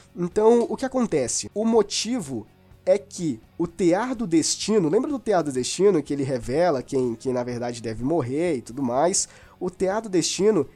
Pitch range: 170-235 Hz